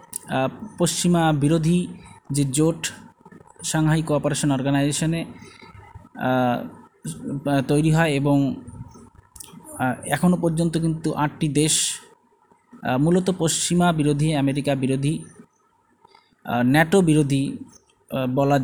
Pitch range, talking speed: 135-170 Hz, 70 wpm